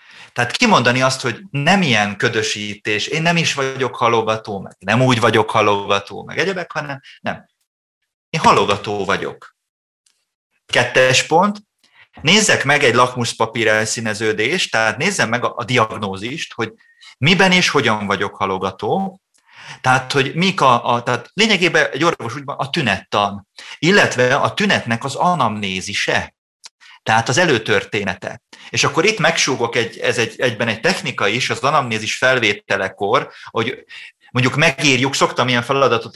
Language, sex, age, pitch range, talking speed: Hungarian, male, 30-49, 110-155 Hz, 135 wpm